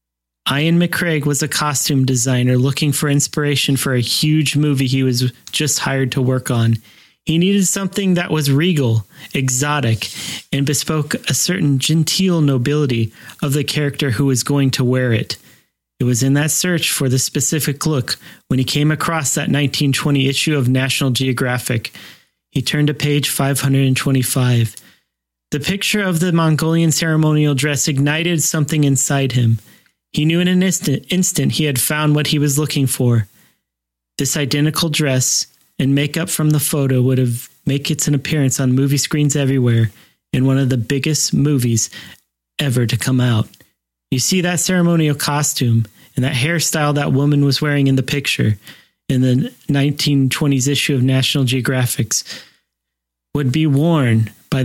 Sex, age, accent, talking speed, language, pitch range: male, 30-49, American, 160 wpm, English, 130-150 Hz